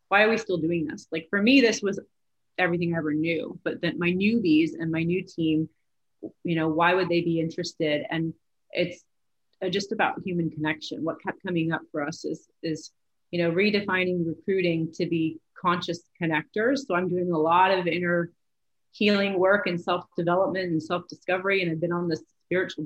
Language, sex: English, female